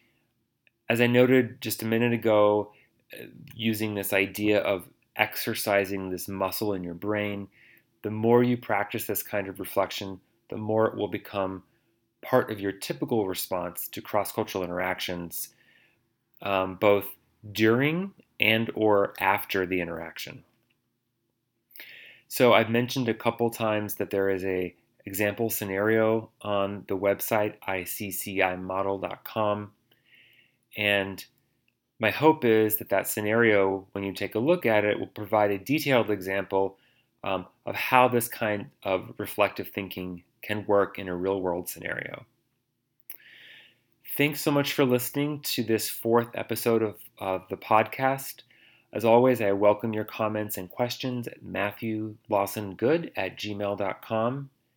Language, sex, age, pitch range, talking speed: English, male, 30-49, 100-115 Hz, 130 wpm